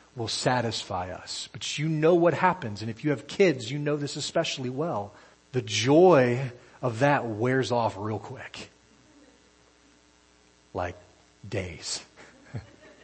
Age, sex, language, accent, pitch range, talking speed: 40-59, male, English, American, 105-145 Hz, 130 wpm